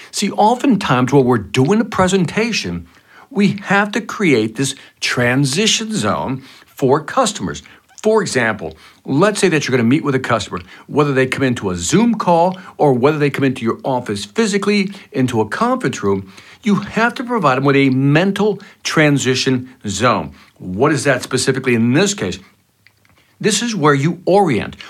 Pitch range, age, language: 120-190 Hz, 60-79, English